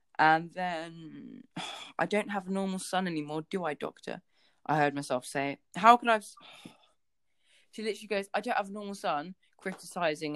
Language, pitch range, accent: English, 160-215 Hz, British